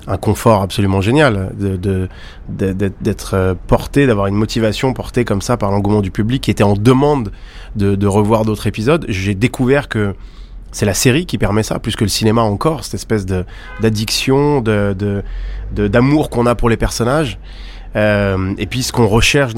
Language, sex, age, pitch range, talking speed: French, male, 20-39, 100-115 Hz, 190 wpm